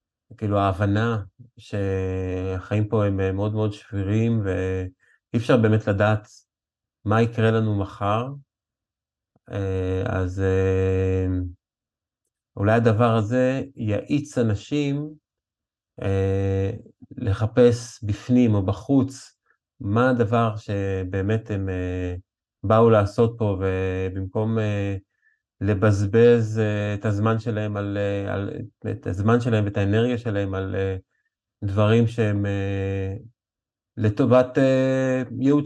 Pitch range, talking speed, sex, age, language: 100-115 Hz, 85 wpm, male, 30-49, Hebrew